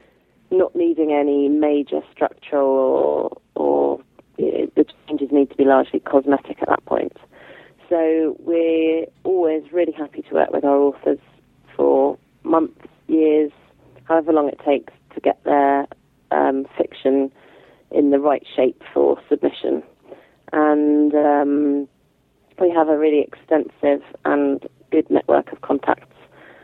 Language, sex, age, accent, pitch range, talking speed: English, female, 30-49, British, 140-160 Hz, 135 wpm